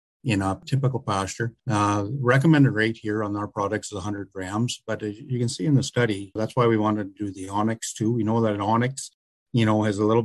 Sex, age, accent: male, 50-69, American